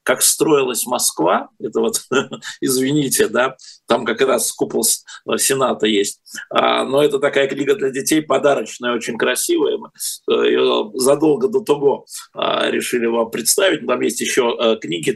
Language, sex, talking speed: Russian, male, 130 wpm